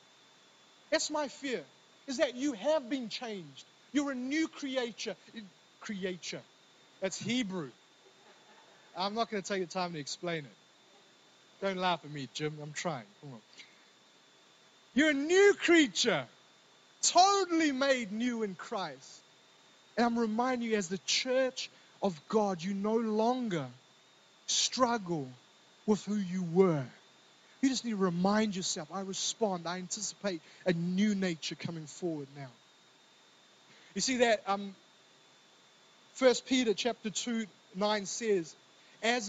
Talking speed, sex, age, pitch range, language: 135 wpm, male, 30-49, 180-240 Hz, English